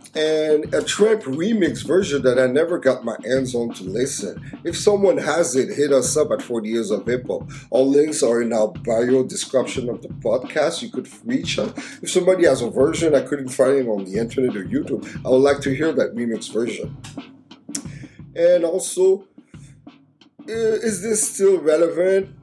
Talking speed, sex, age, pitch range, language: 185 wpm, male, 30-49, 125-185 Hz, English